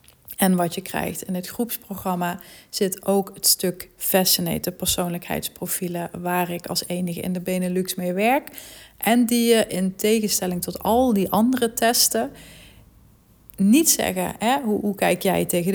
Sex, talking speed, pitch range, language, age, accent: female, 150 wpm, 180-225 Hz, Dutch, 30-49, Dutch